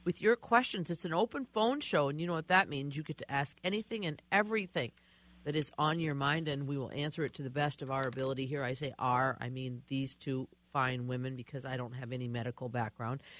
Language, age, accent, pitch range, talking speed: English, 50-69, American, 140-200 Hz, 240 wpm